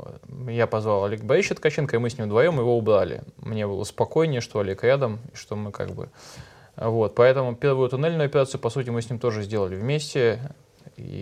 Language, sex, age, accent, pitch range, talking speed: Russian, male, 20-39, native, 105-130 Hz, 195 wpm